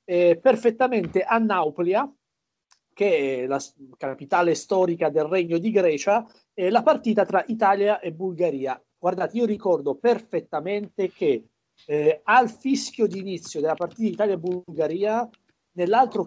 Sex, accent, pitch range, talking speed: male, native, 170-235 Hz, 135 wpm